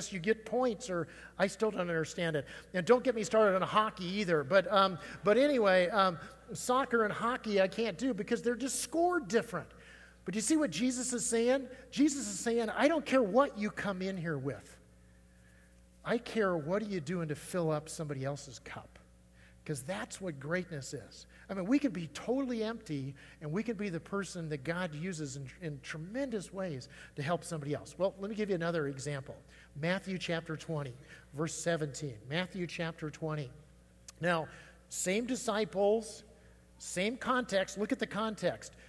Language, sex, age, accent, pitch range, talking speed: English, male, 50-69, American, 160-225 Hz, 180 wpm